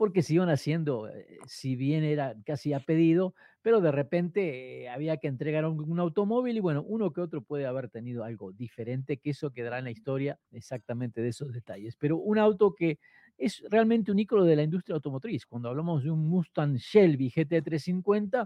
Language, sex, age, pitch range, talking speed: Spanish, male, 50-69, 125-170 Hz, 195 wpm